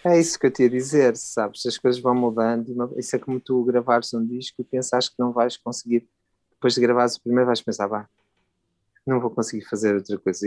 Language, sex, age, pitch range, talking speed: Portuguese, male, 30-49, 120-140 Hz, 225 wpm